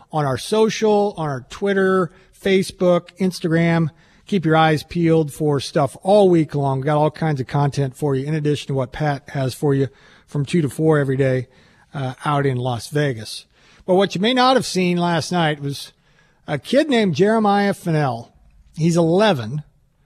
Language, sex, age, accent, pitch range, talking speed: English, male, 50-69, American, 145-190 Hz, 185 wpm